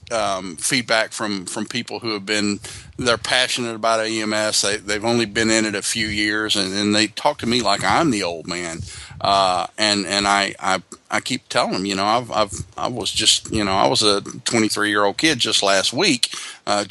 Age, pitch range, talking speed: 40-59, 100-110 Hz, 215 wpm